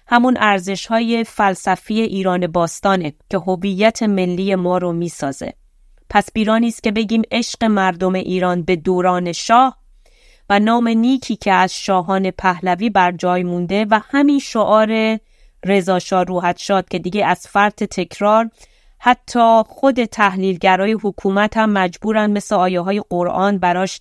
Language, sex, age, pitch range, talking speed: Persian, female, 30-49, 185-220 Hz, 130 wpm